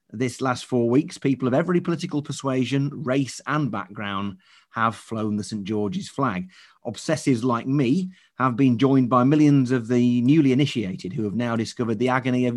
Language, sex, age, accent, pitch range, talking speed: English, male, 30-49, British, 110-140 Hz, 175 wpm